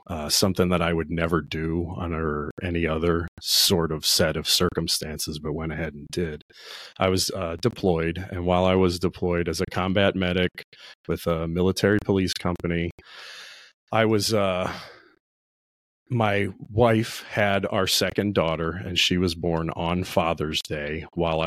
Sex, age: male, 40-59